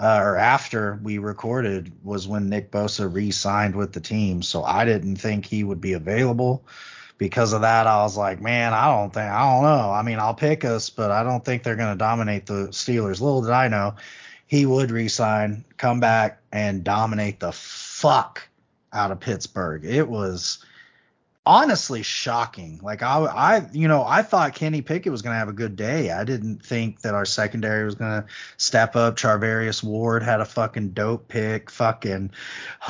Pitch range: 105-135 Hz